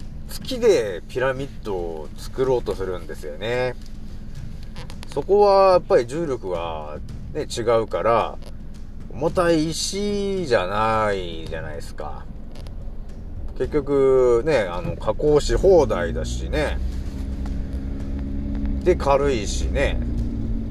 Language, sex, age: Japanese, male, 40-59